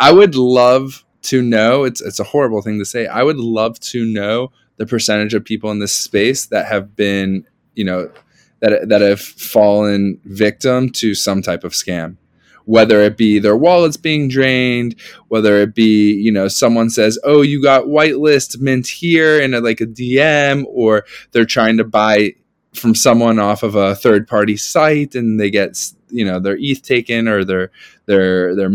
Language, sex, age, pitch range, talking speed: English, male, 20-39, 105-135 Hz, 180 wpm